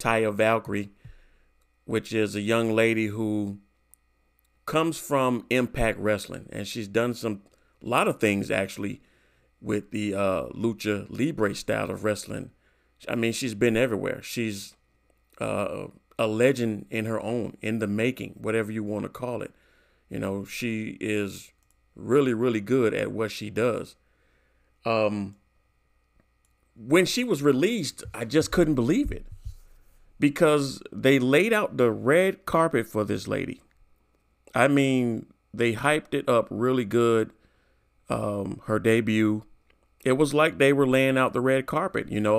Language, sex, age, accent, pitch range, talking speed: English, male, 40-59, American, 105-125 Hz, 145 wpm